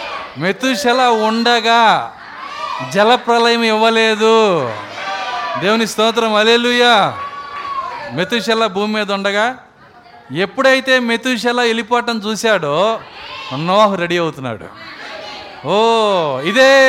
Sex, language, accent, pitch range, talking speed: male, Telugu, native, 185-255 Hz, 70 wpm